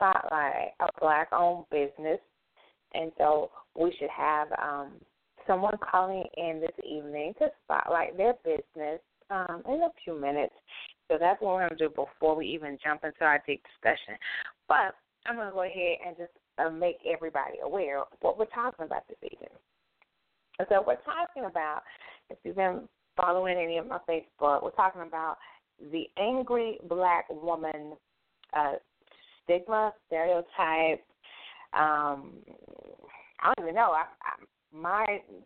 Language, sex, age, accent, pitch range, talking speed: English, female, 30-49, American, 160-210 Hz, 150 wpm